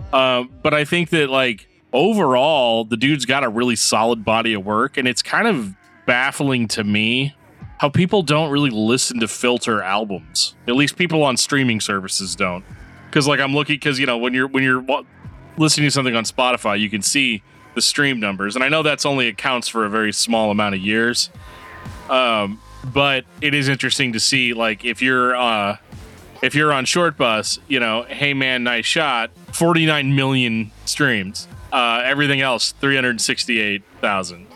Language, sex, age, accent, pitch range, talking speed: English, male, 30-49, American, 105-145 Hz, 180 wpm